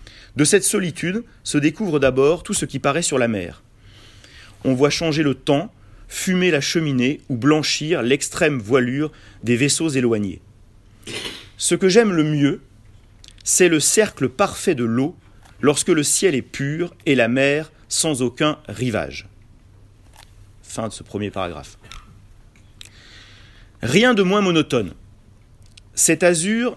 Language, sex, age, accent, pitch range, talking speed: French, male, 40-59, French, 105-155 Hz, 135 wpm